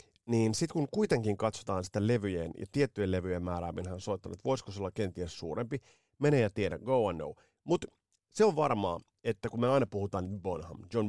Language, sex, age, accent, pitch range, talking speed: Finnish, male, 30-49, native, 95-120 Hz, 200 wpm